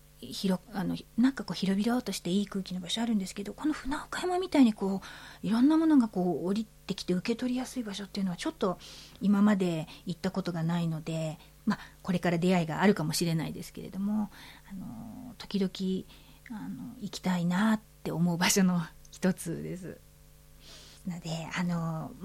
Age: 40-59